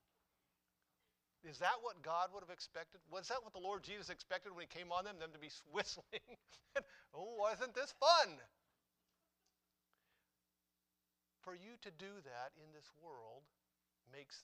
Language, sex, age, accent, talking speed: English, male, 50-69, American, 150 wpm